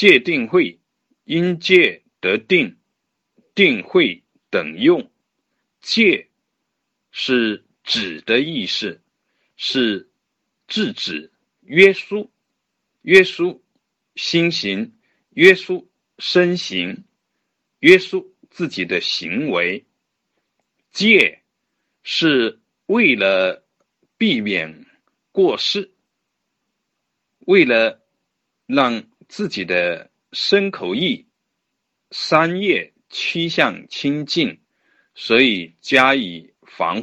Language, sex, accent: Chinese, male, native